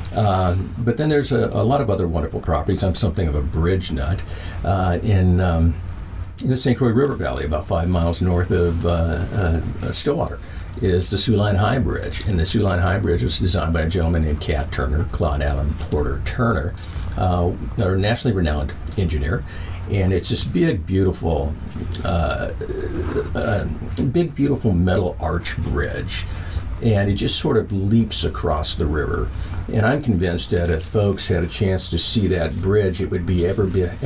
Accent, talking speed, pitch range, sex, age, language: American, 180 wpm, 85-105 Hz, male, 50-69, English